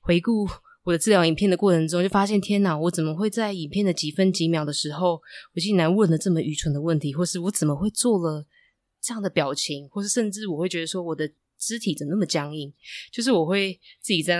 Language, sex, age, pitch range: Chinese, female, 20-39, 150-195 Hz